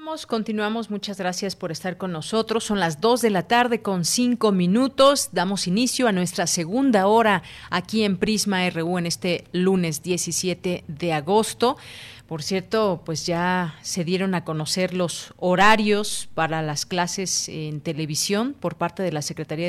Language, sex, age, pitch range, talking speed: Spanish, female, 40-59, 165-200 Hz, 160 wpm